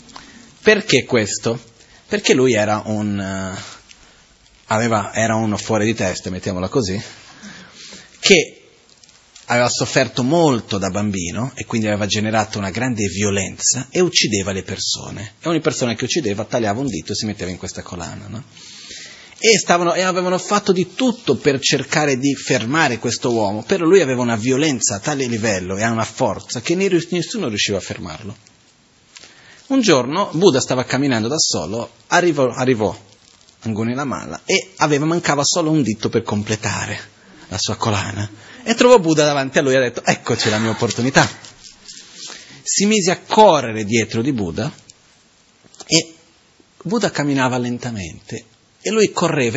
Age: 30-49